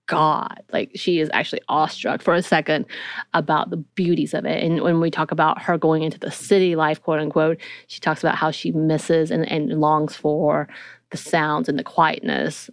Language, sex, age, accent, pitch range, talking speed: English, female, 30-49, American, 155-180 Hz, 200 wpm